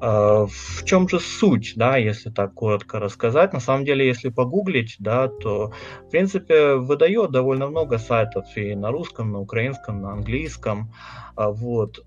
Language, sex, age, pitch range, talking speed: Russian, male, 30-49, 105-130 Hz, 160 wpm